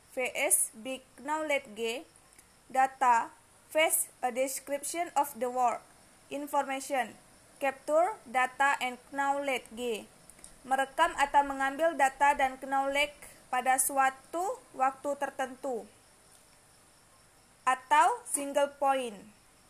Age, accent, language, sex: 20-39, native, Indonesian, female